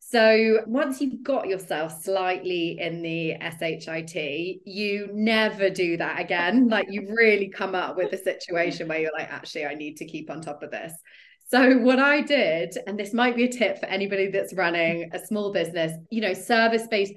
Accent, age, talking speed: British, 30-49, 190 wpm